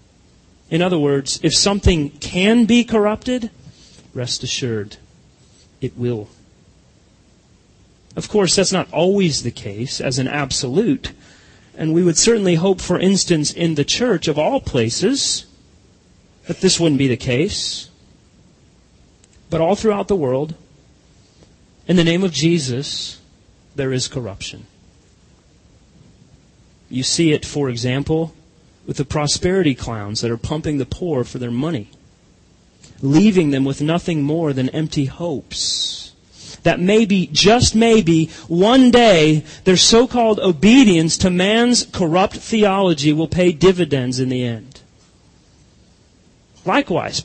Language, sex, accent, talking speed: English, male, American, 125 wpm